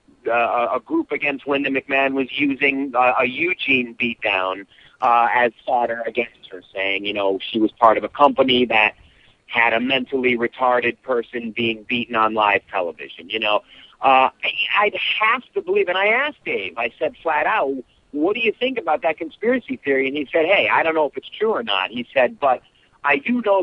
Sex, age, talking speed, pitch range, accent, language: male, 50-69, 200 wpm, 115-165 Hz, American, English